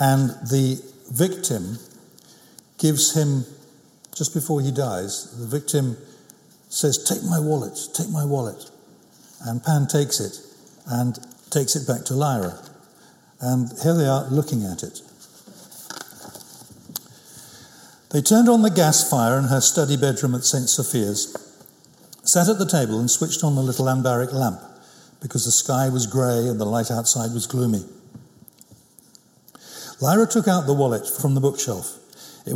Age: 60-79